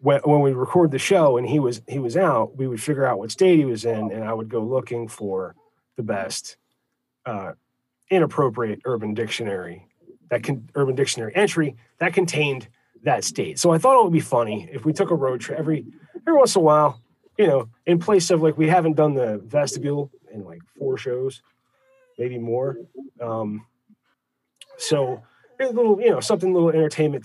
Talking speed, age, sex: 190 wpm, 30-49, male